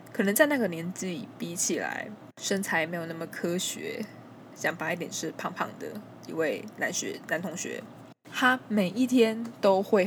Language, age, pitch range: Chinese, 20-39, 170-215 Hz